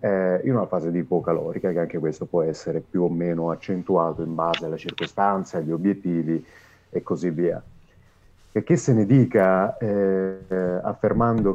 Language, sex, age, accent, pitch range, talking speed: Italian, male, 30-49, native, 90-105 Hz, 155 wpm